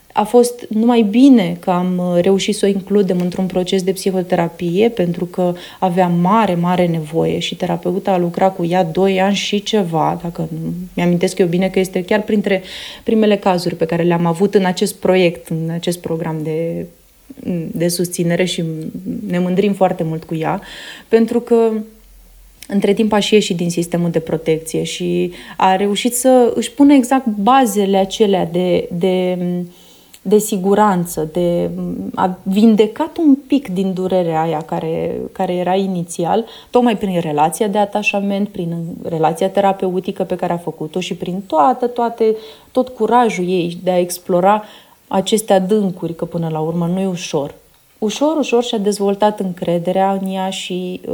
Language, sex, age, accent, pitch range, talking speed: Romanian, female, 30-49, native, 175-215 Hz, 160 wpm